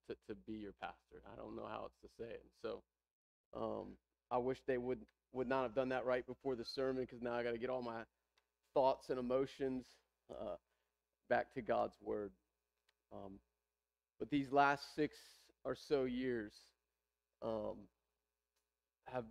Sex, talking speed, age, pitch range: male, 170 wpm, 30-49, 80-135 Hz